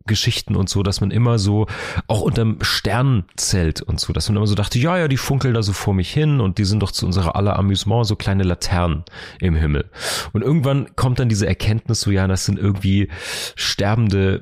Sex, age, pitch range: male, 40-59, 95-115 Hz